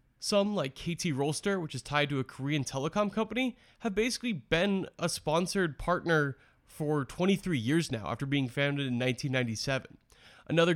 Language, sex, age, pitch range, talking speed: English, male, 20-39, 130-175 Hz, 155 wpm